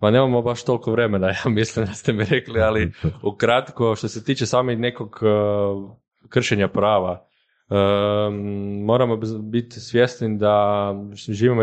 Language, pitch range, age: Croatian, 105-120 Hz, 20-39